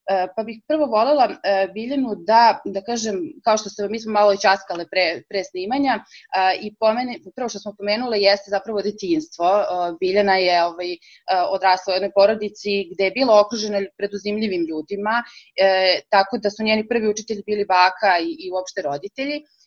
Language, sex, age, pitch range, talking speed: English, female, 20-39, 190-225 Hz, 160 wpm